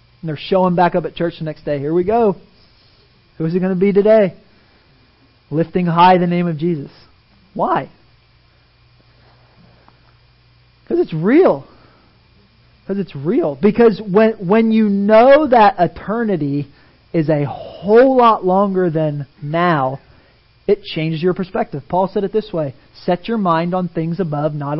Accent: American